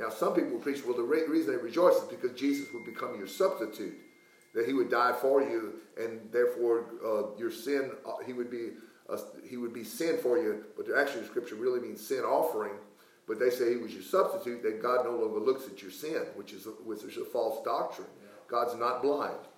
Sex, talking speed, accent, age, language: male, 225 wpm, American, 50-69, English